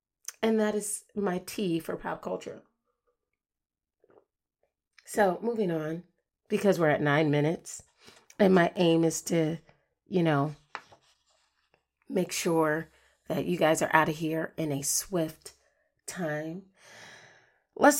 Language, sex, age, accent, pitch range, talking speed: English, female, 30-49, American, 170-235 Hz, 125 wpm